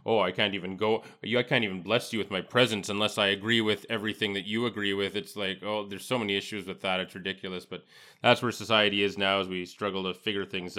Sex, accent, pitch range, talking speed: male, American, 100-120 Hz, 250 wpm